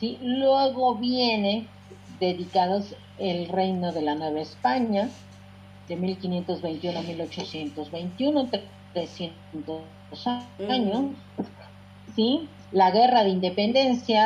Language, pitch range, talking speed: Spanish, 170-235 Hz, 90 wpm